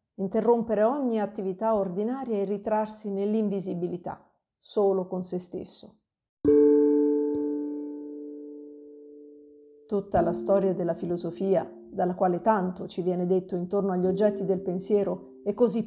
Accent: native